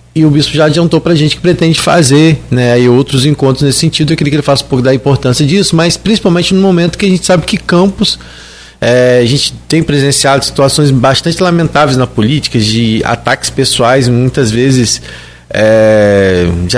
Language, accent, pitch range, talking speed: Portuguese, Brazilian, 120-150 Hz, 195 wpm